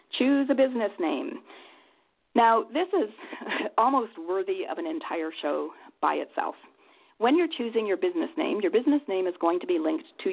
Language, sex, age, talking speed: English, female, 40-59, 175 wpm